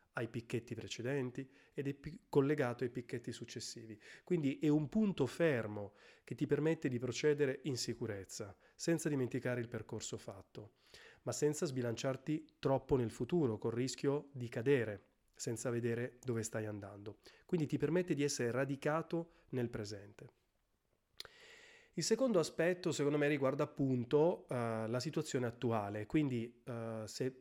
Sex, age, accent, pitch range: male, 30-49, native, 120-150 Hz